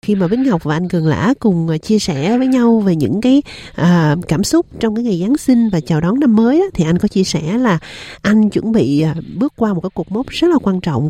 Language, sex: Vietnamese, female